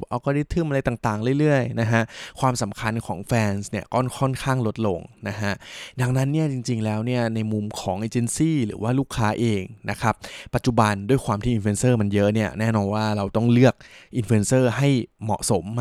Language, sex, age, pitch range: Thai, male, 20-39, 105-130 Hz